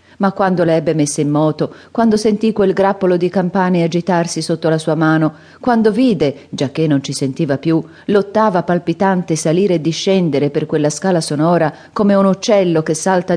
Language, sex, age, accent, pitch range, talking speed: Italian, female, 40-59, native, 160-210 Hz, 180 wpm